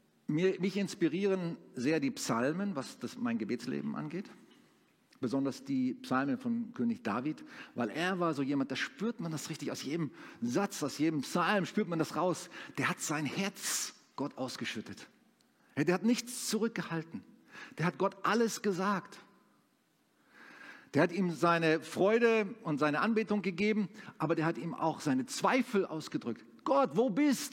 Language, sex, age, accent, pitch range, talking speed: German, male, 50-69, German, 165-240 Hz, 155 wpm